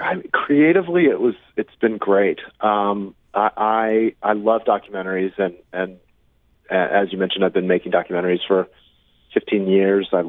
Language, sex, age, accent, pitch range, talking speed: English, male, 30-49, American, 80-100 Hz, 150 wpm